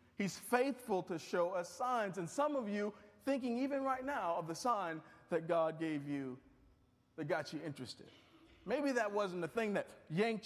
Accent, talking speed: American, 185 wpm